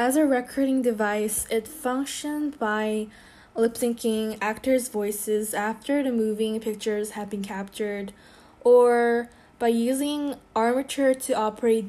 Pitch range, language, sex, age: 205-240 Hz, Korean, female, 10-29